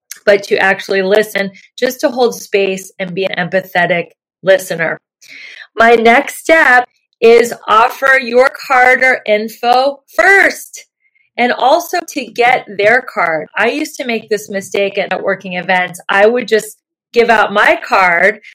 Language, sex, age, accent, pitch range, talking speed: English, female, 30-49, American, 195-250 Hz, 145 wpm